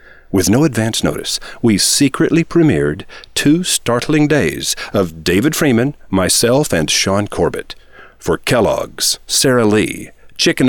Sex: male